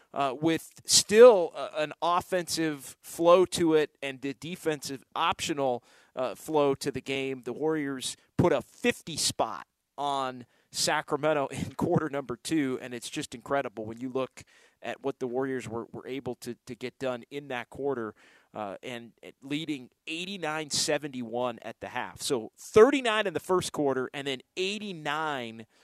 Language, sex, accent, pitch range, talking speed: English, male, American, 125-155 Hz, 155 wpm